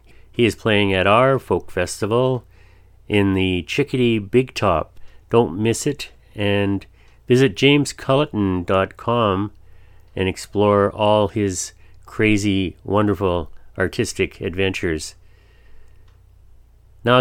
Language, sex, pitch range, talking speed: English, male, 95-115 Hz, 95 wpm